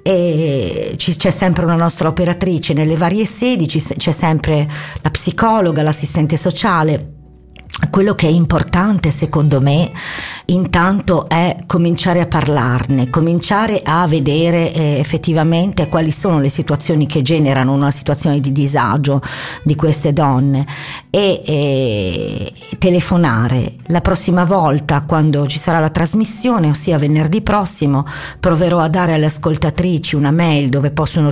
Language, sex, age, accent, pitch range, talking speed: Italian, female, 40-59, native, 145-175 Hz, 130 wpm